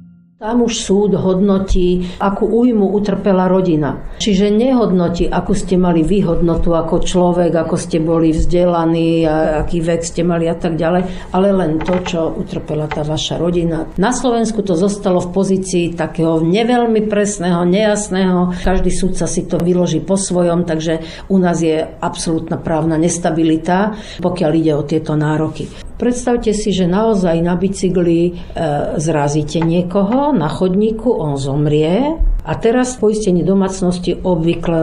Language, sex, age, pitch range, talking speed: Slovak, female, 50-69, 160-200 Hz, 140 wpm